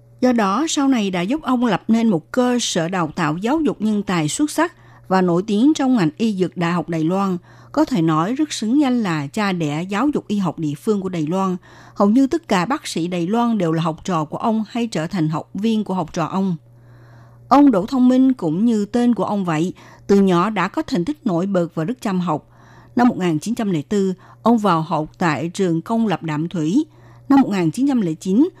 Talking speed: 225 wpm